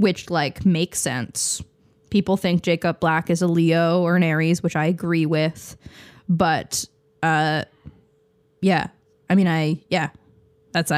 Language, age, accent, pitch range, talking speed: English, 10-29, American, 155-220 Hz, 140 wpm